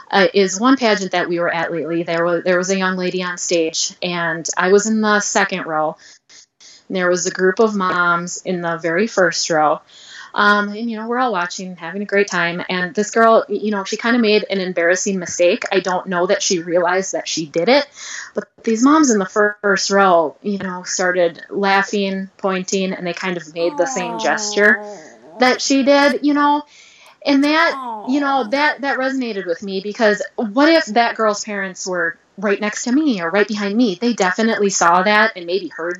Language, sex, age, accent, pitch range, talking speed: English, female, 20-39, American, 180-225 Hz, 210 wpm